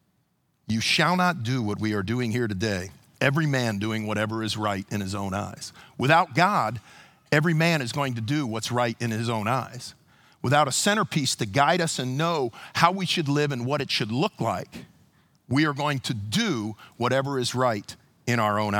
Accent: American